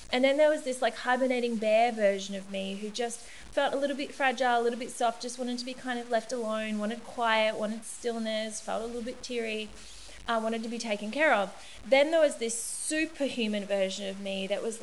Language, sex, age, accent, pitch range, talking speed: English, female, 20-39, Australian, 215-260 Hz, 225 wpm